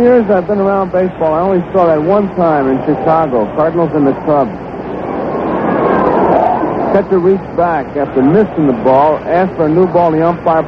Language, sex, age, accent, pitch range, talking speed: English, male, 60-79, American, 155-205 Hz, 180 wpm